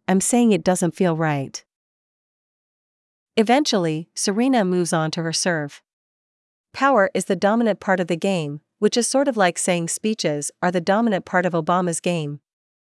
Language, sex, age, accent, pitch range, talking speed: English, female, 40-59, American, 170-205 Hz, 165 wpm